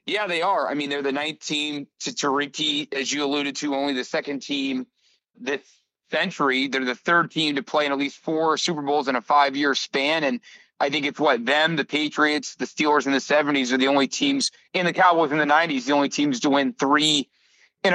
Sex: male